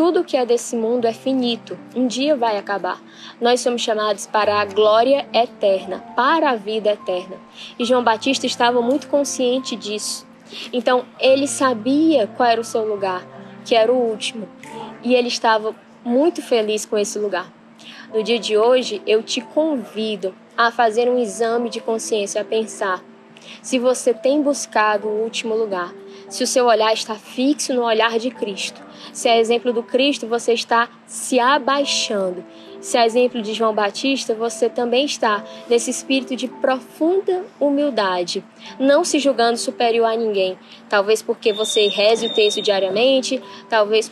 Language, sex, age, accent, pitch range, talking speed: Portuguese, female, 10-29, Brazilian, 215-255 Hz, 160 wpm